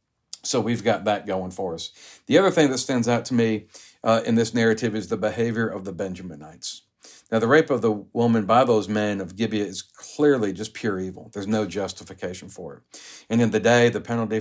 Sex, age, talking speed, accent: male, 50-69, 215 wpm, American